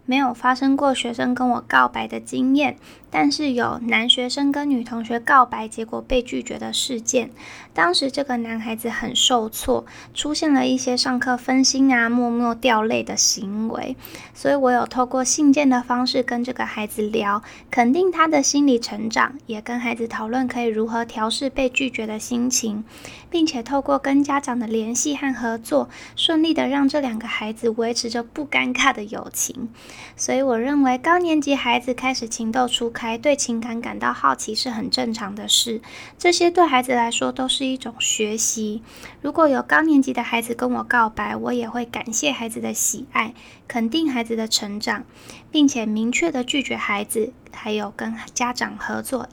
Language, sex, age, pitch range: Chinese, female, 20-39, 230-270 Hz